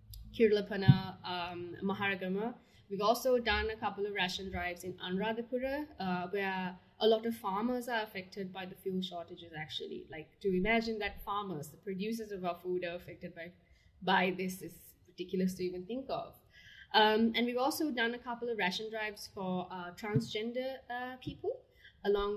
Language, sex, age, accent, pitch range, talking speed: English, female, 10-29, Indian, 180-225 Hz, 165 wpm